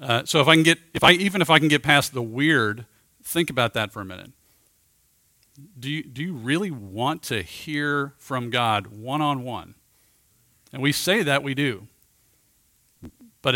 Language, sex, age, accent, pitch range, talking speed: English, male, 40-59, American, 115-150 Hz, 175 wpm